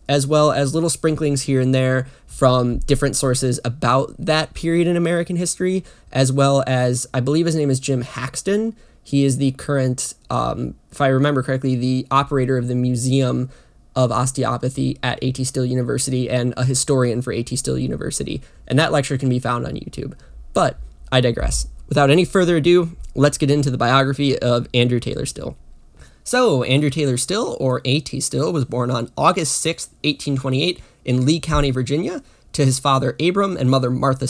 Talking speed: 180 wpm